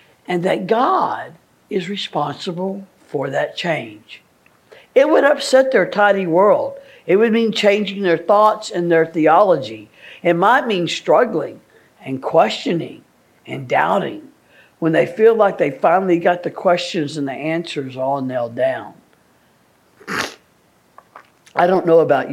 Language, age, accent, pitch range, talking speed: English, 60-79, American, 160-225 Hz, 135 wpm